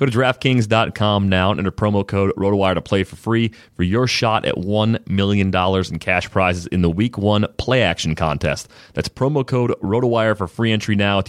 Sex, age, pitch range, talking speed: male, 30-49, 90-110 Hz, 205 wpm